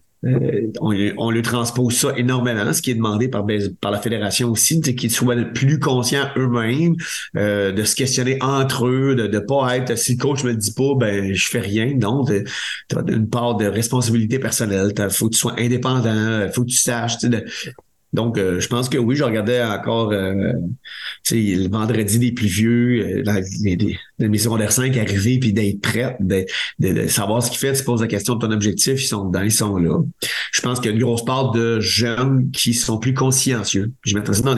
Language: French